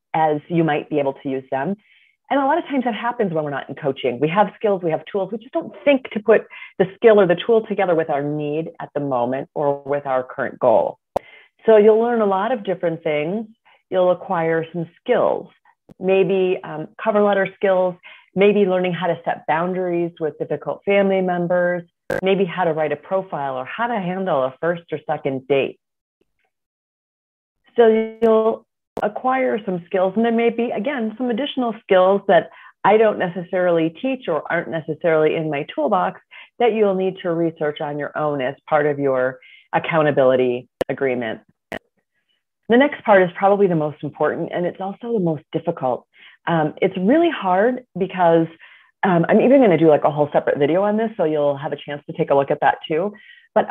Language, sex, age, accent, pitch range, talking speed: English, female, 40-59, American, 150-210 Hz, 195 wpm